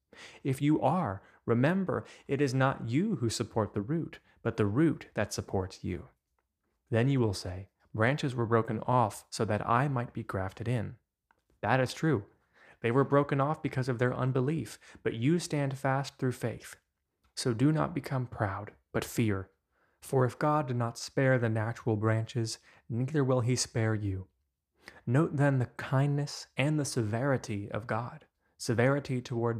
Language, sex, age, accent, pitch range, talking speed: English, male, 20-39, American, 110-135 Hz, 165 wpm